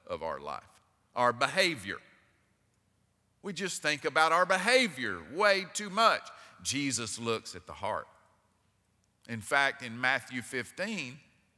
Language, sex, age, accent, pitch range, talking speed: English, male, 50-69, American, 120-180 Hz, 125 wpm